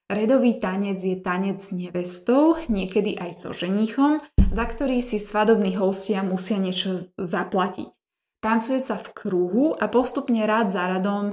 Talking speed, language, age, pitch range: 145 wpm, Slovak, 20-39, 190-225 Hz